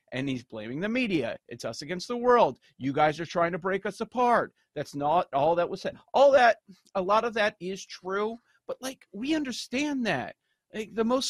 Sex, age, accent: male, 40-59, American